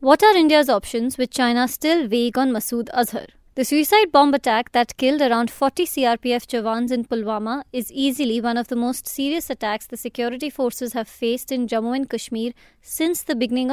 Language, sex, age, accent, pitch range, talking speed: English, female, 20-39, Indian, 235-275 Hz, 190 wpm